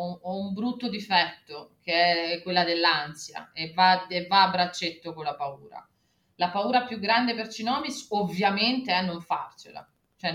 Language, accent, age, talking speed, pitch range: Italian, native, 30-49, 160 wpm, 180-220 Hz